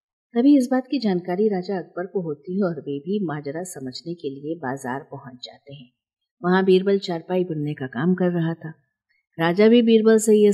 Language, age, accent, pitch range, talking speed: Hindi, 50-69, native, 155-205 Hz, 200 wpm